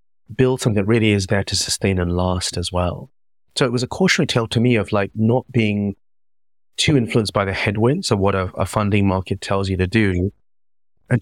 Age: 30-49